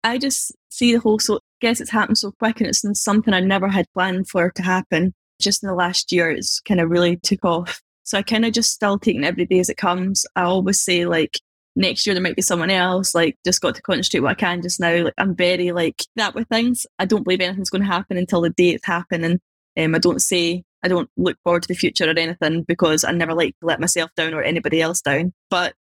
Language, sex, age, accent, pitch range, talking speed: English, female, 10-29, British, 170-205 Hz, 255 wpm